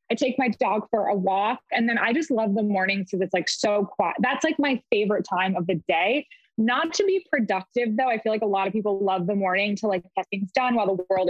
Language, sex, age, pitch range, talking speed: English, female, 20-39, 195-240 Hz, 265 wpm